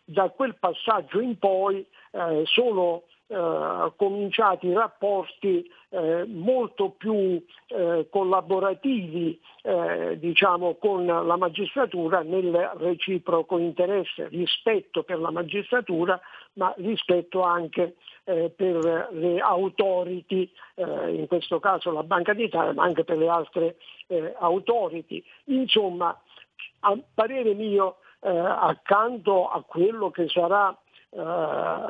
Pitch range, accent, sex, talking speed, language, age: 175-220 Hz, native, male, 110 wpm, Italian, 50-69